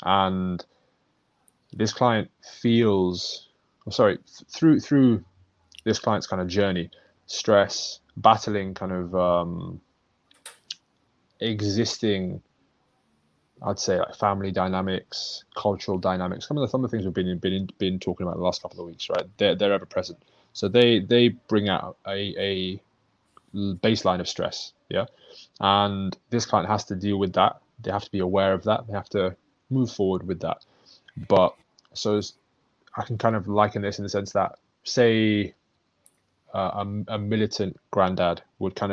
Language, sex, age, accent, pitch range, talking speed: English, male, 20-39, British, 95-110 Hz, 155 wpm